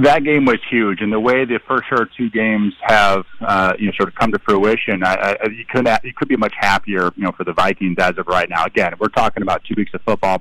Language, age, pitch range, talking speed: English, 30-49, 120-145 Hz, 270 wpm